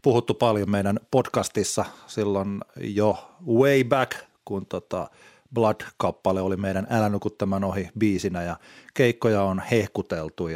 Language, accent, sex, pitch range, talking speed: Finnish, native, male, 100-125 Hz, 120 wpm